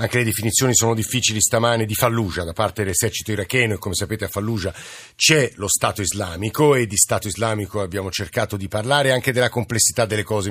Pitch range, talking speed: 105-130 Hz, 195 wpm